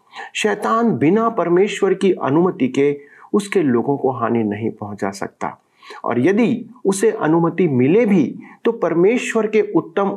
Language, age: Hindi, 40-59